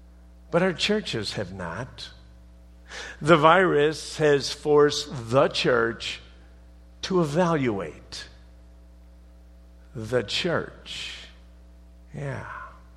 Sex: male